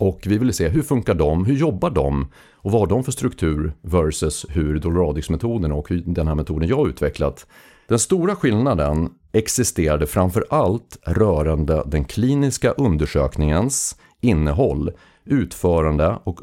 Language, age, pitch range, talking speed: Swedish, 40-59, 80-100 Hz, 140 wpm